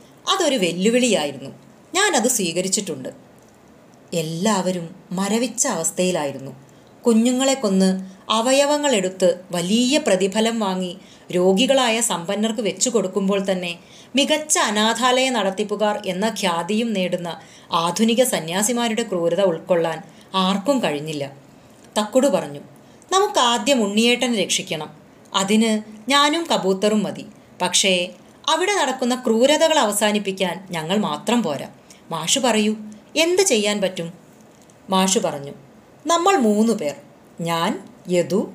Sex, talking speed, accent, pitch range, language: female, 95 wpm, native, 185-245 Hz, Malayalam